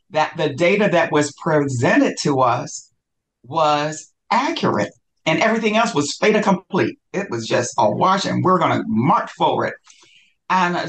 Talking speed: 155 wpm